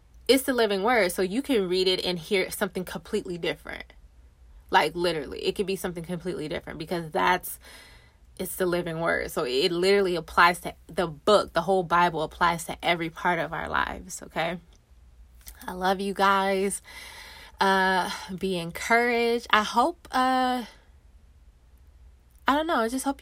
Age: 20-39